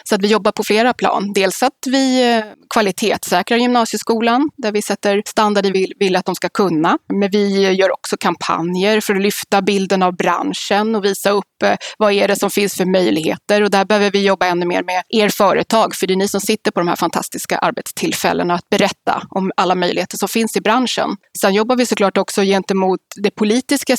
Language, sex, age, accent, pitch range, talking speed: Swedish, female, 20-39, native, 185-225 Hz, 200 wpm